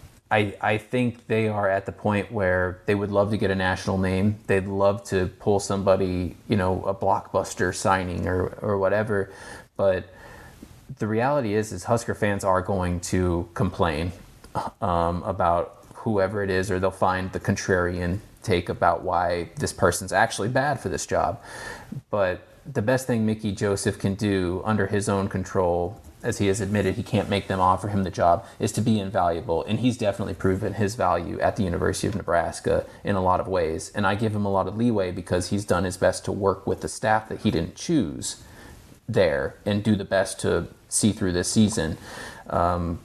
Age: 30-49